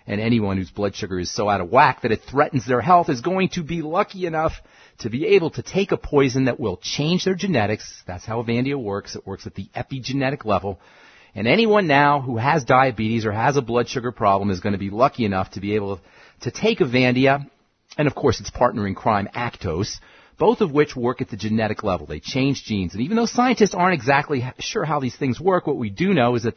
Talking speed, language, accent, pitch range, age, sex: 230 wpm, English, American, 115-160 Hz, 40-59, male